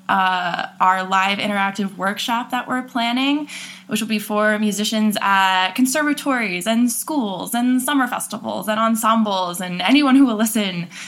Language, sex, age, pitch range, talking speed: English, female, 20-39, 190-225 Hz, 145 wpm